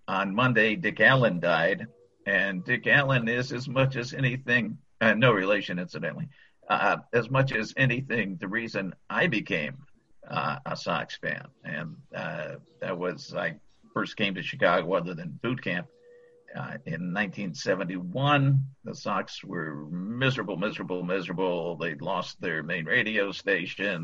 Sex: male